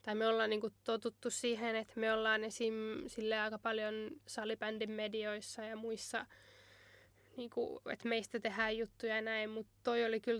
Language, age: Finnish, 10-29